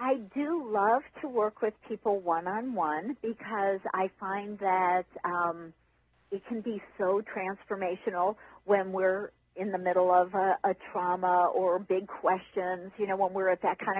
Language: English